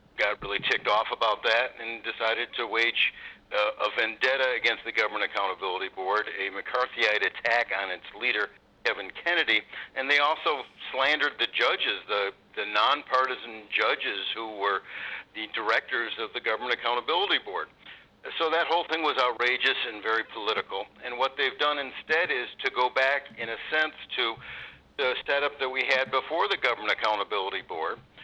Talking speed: 165 wpm